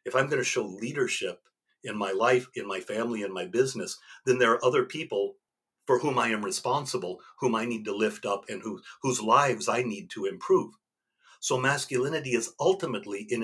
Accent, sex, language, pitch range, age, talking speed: American, male, English, 125-195 Hz, 50-69, 195 wpm